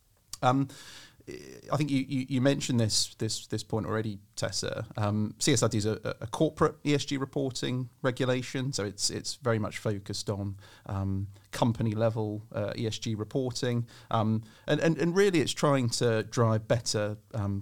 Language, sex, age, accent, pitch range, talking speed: English, male, 30-49, British, 105-125 Hz, 155 wpm